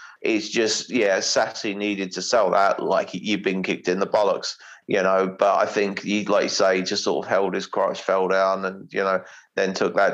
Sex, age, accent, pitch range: male, 30-49, British, 95-105 Hz